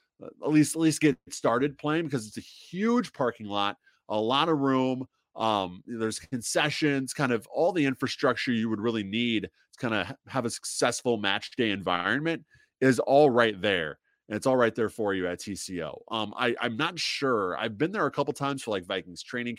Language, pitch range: English, 105-145 Hz